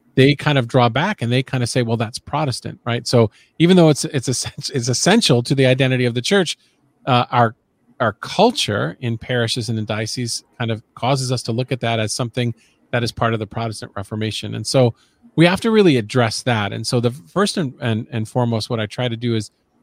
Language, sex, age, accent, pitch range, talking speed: English, male, 40-59, American, 110-135 Hz, 225 wpm